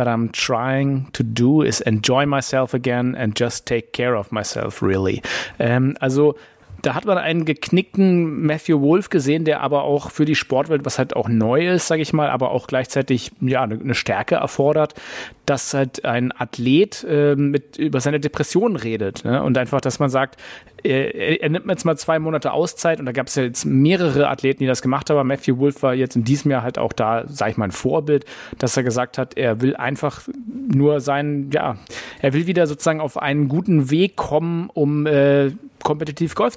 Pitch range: 125-155 Hz